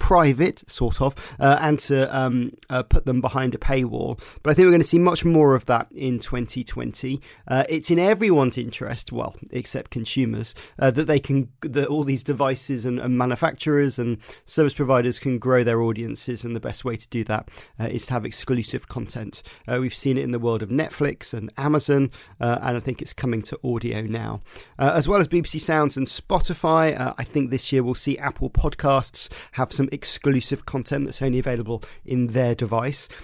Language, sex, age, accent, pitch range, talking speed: English, male, 40-59, British, 120-145 Hz, 200 wpm